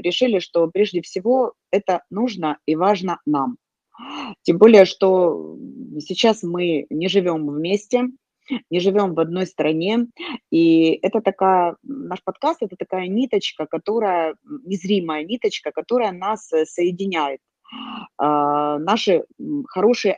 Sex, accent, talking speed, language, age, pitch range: female, native, 115 wpm, Russian, 30-49, 155-215 Hz